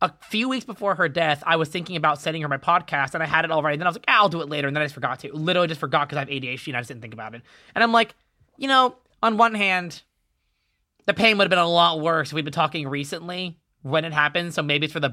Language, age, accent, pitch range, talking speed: English, 20-39, American, 140-180 Hz, 315 wpm